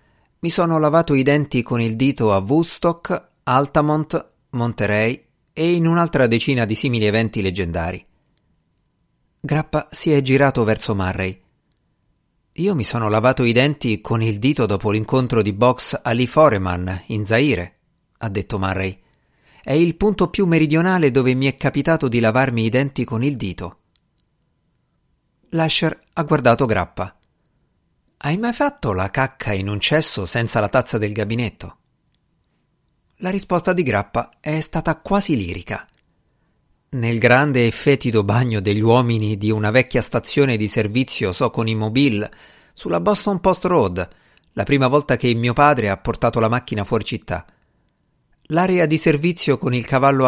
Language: Italian